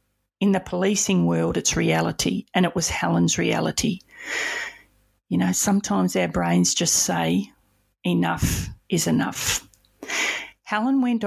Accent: Australian